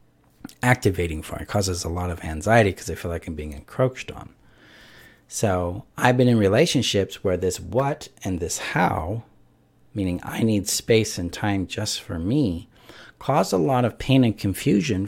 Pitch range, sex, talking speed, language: 90-120 Hz, male, 175 wpm, English